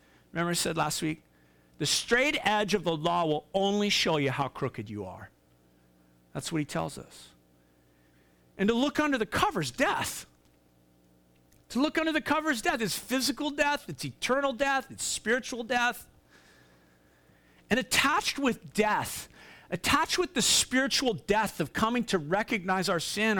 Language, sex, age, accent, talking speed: English, male, 50-69, American, 155 wpm